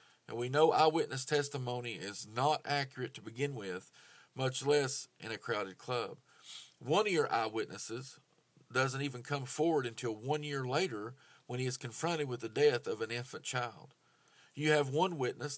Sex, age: male, 40-59